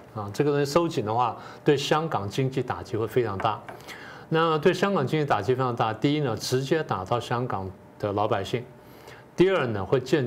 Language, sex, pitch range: Chinese, male, 110-140 Hz